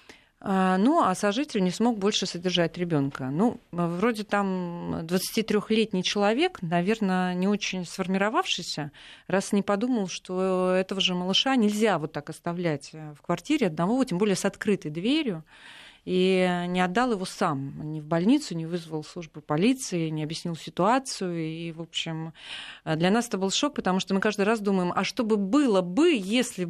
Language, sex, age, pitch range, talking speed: Russian, female, 30-49, 175-220 Hz, 160 wpm